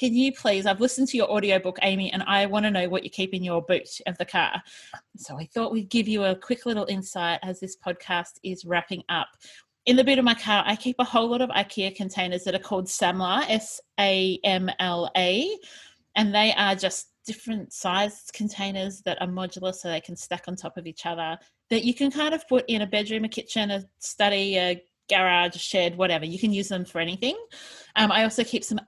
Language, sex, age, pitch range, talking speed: English, female, 30-49, 185-225 Hz, 220 wpm